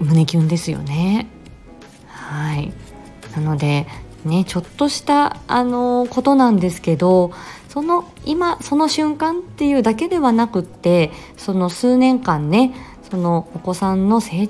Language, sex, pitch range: Japanese, female, 160-245 Hz